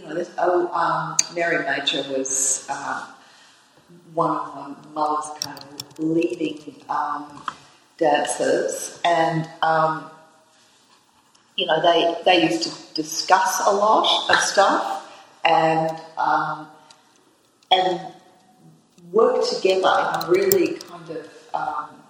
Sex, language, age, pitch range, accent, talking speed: female, English, 40-59, 160-180 Hz, Australian, 105 wpm